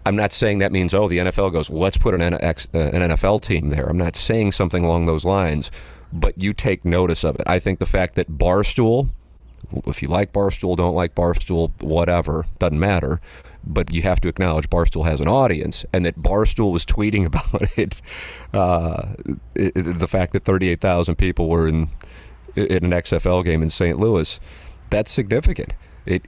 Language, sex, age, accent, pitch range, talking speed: English, male, 40-59, American, 80-100 Hz, 180 wpm